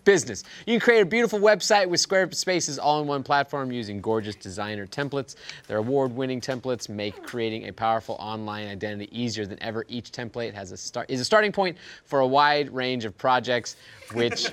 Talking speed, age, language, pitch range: 180 wpm, 20-39, English, 130-185 Hz